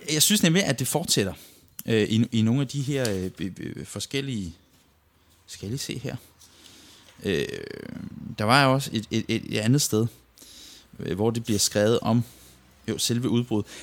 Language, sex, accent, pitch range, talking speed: Danish, male, native, 95-120 Hz, 135 wpm